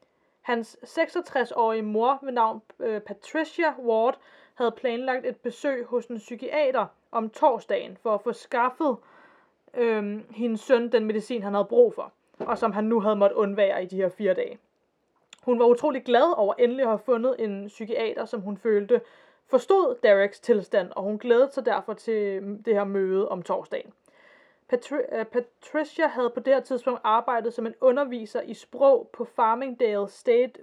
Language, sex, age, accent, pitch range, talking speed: Danish, female, 20-39, native, 220-275 Hz, 165 wpm